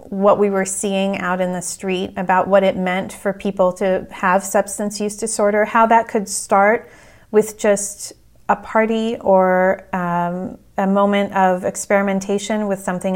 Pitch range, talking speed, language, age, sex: 185-210 Hz, 160 wpm, English, 30-49, female